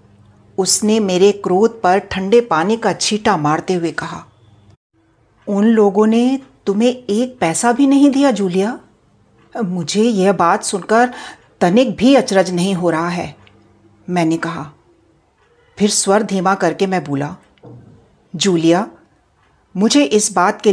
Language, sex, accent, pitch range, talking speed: Hindi, female, native, 165-235 Hz, 130 wpm